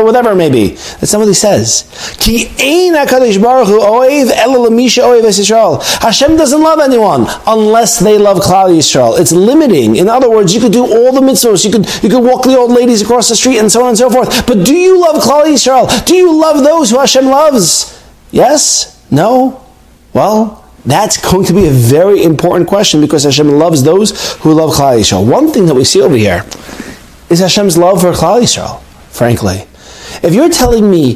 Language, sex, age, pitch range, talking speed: English, male, 40-59, 170-255 Hz, 180 wpm